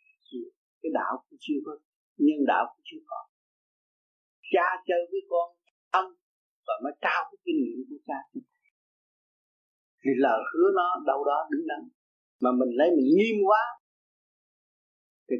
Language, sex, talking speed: Vietnamese, male, 150 wpm